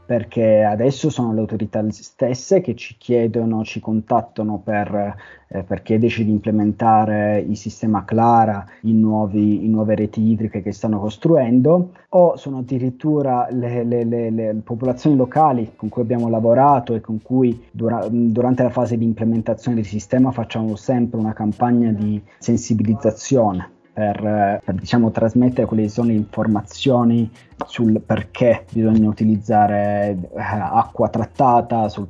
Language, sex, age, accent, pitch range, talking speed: Italian, male, 20-39, native, 105-120 Hz, 135 wpm